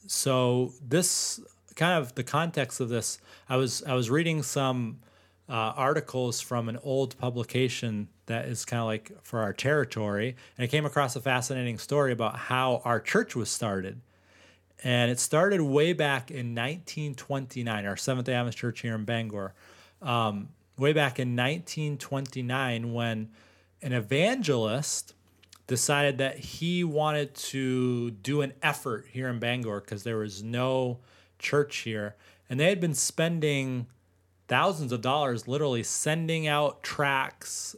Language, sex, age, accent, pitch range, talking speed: English, male, 30-49, American, 115-145 Hz, 150 wpm